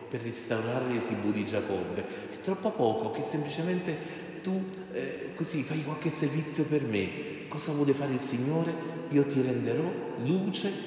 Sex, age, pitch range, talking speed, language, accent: male, 40-59, 115-150 Hz, 155 wpm, Italian, native